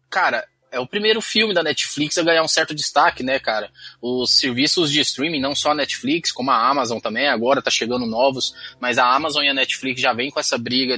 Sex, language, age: male, Portuguese, 20-39